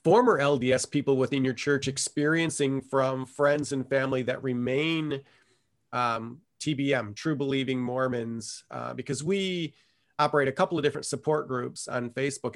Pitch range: 130-155 Hz